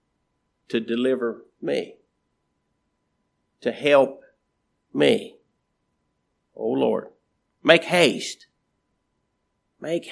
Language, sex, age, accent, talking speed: English, male, 50-69, American, 65 wpm